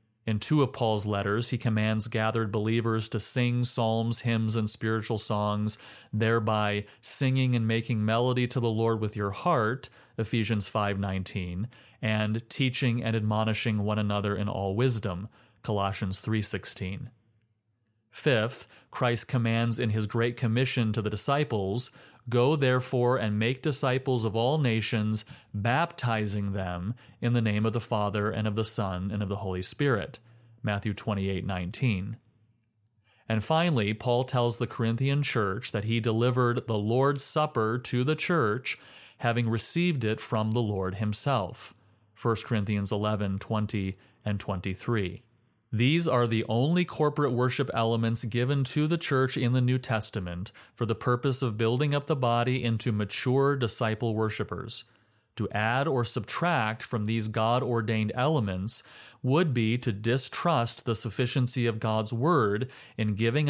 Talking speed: 145 wpm